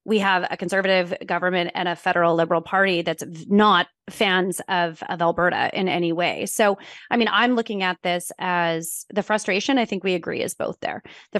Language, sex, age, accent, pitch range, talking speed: English, female, 30-49, American, 175-210 Hz, 195 wpm